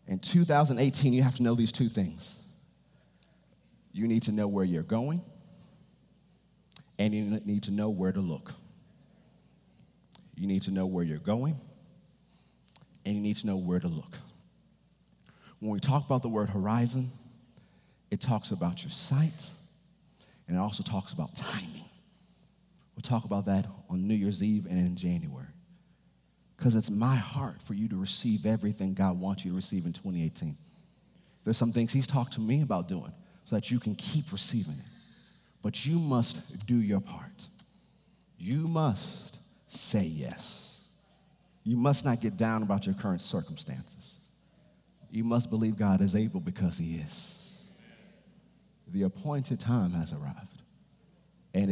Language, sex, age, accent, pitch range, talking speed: English, male, 30-49, American, 95-160 Hz, 155 wpm